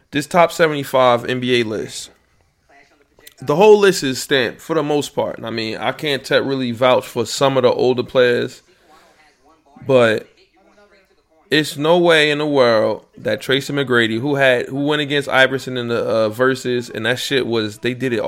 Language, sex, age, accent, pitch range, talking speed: English, male, 20-39, American, 120-145 Hz, 175 wpm